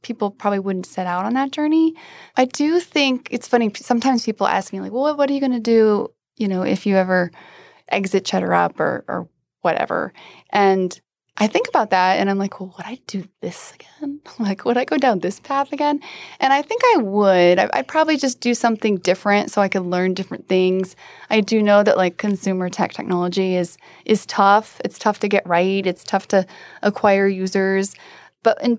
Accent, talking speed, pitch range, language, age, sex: American, 205 wpm, 185-255 Hz, English, 10-29, female